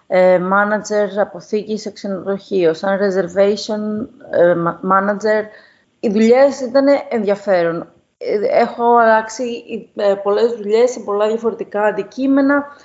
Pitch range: 190-230 Hz